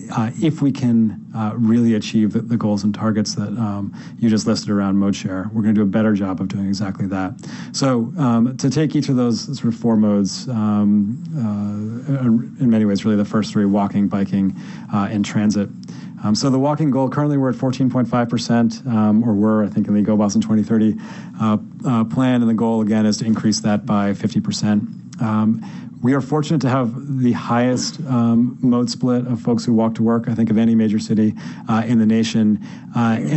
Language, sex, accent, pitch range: English, male, American, 105-120 Hz